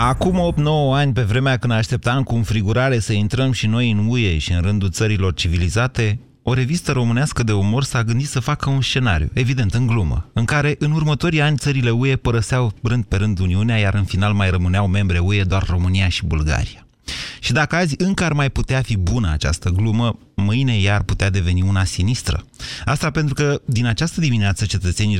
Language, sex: Romanian, male